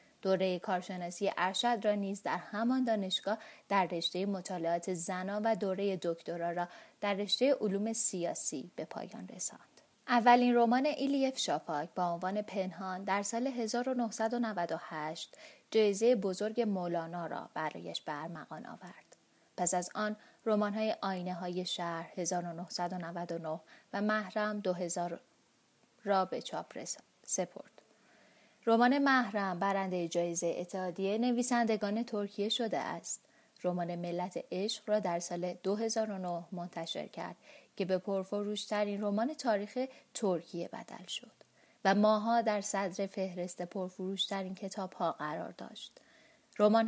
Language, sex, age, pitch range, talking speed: Persian, female, 30-49, 180-225 Hz, 120 wpm